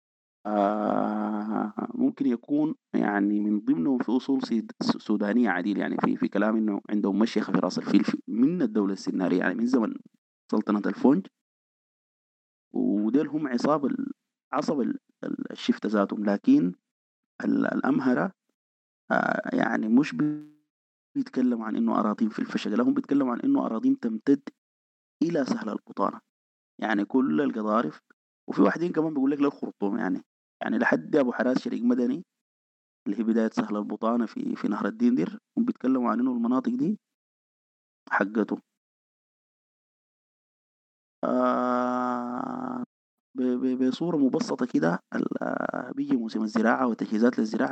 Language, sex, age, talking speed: Arabic, male, 30-49, 120 wpm